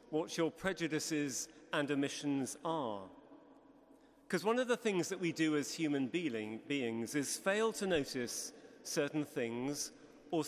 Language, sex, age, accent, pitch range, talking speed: English, male, 40-59, British, 145-185 Hz, 135 wpm